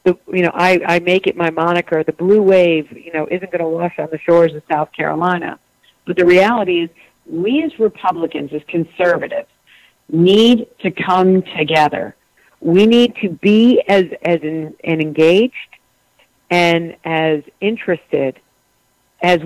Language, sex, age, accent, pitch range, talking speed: English, female, 50-69, American, 165-205 Hz, 155 wpm